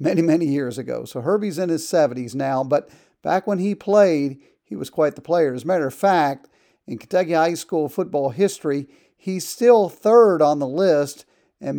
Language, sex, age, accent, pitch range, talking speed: English, male, 50-69, American, 140-185 Hz, 195 wpm